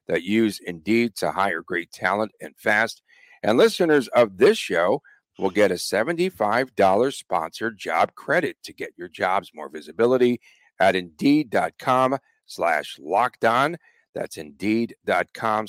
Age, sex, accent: 50-69, male, American